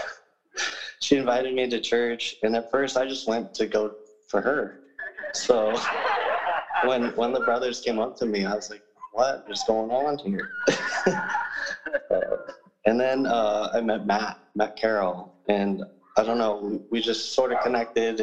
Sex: male